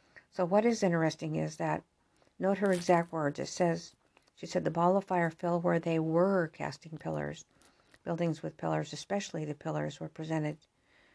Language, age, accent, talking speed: English, 50-69, American, 170 wpm